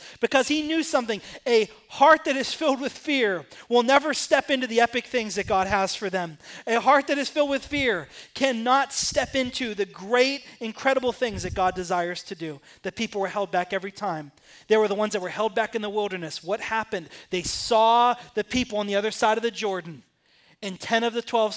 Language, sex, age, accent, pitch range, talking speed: English, male, 30-49, American, 195-270 Hz, 215 wpm